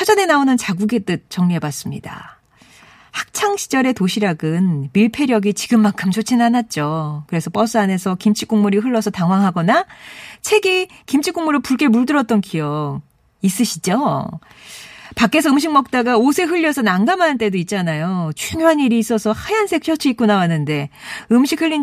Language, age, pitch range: Korean, 40-59, 185-275 Hz